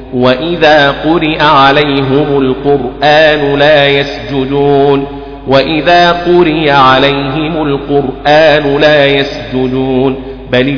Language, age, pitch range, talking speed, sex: Arabic, 40-59, 130-150 Hz, 70 wpm, male